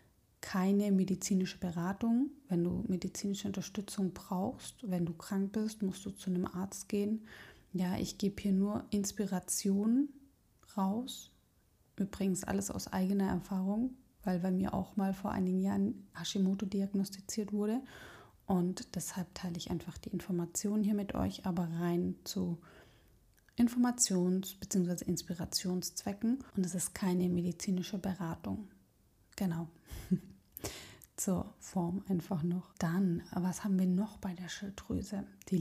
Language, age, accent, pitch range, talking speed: German, 30-49, German, 180-215 Hz, 130 wpm